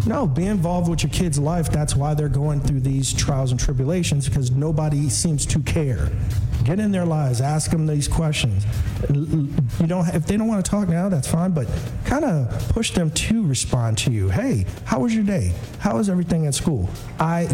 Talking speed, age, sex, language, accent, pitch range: 210 wpm, 50-69, male, English, American, 120-160 Hz